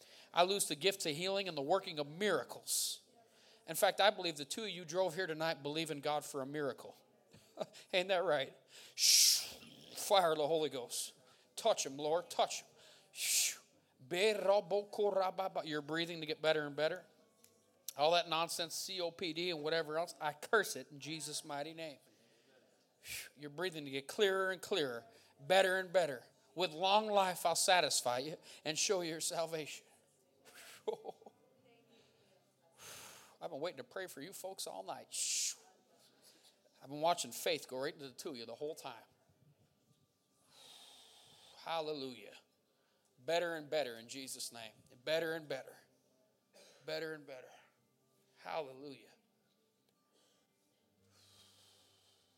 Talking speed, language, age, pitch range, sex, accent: 135 wpm, English, 40-59, 140-185 Hz, male, American